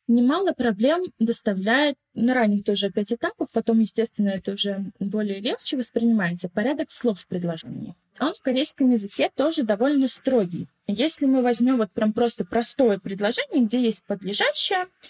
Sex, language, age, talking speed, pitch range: female, Russian, 20-39, 145 wpm, 210-285 Hz